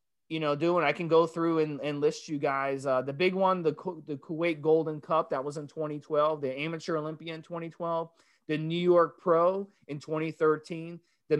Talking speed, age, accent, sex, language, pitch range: 195 wpm, 30-49, American, male, English, 155-180 Hz